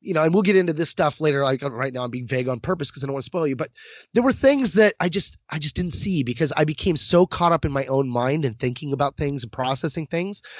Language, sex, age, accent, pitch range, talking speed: English, male, 30-49, American, 140-185 Hz, 295 wpm